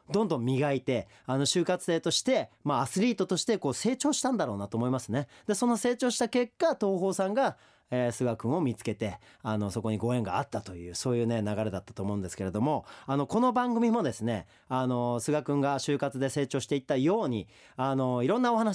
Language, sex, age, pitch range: Japanese, male, 40-59, 125-210 Hz